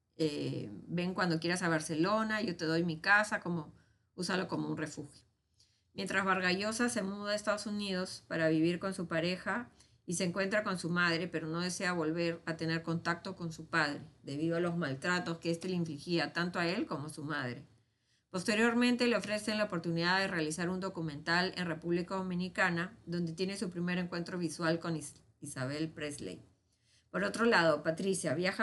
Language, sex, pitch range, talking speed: Spanish, female, 160-190 Hz, 180 wpm